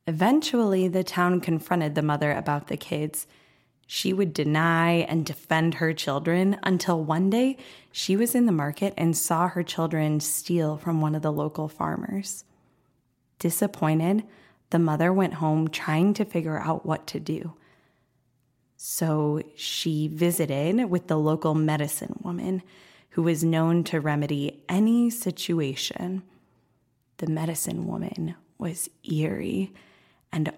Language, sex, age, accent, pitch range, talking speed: English, female, 20-39, American, 150-185 Hz, 135 wpm